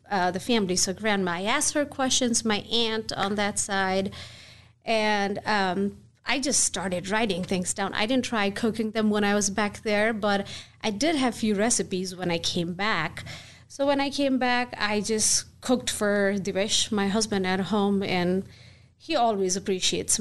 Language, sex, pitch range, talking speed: English, female, 185-225 Hz, 180 wpm